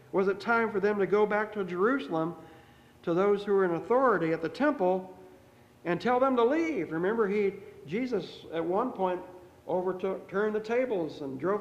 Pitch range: 170-220 Hz